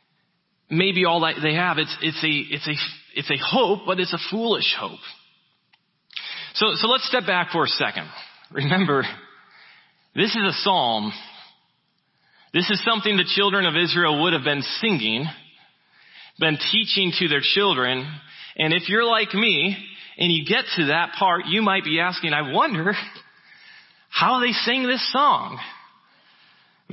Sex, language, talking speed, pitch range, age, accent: male, English, 155 wpm, 165-210 Hz, 30-49, American